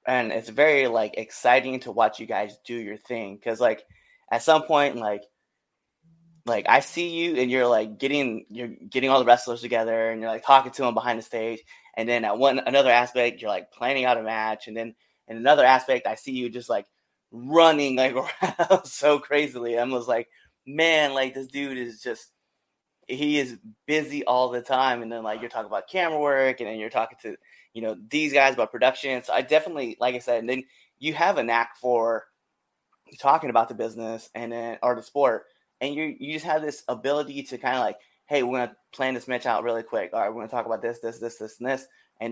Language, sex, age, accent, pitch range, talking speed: English, male, 20-39, American, 115-135 Hz, 225 wpm